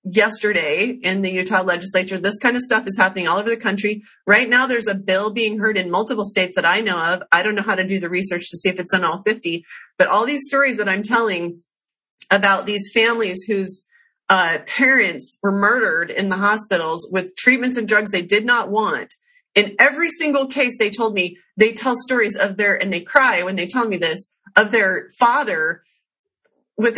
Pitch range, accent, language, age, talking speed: 190-240 Hz, American, English, 30-49, 210 wpm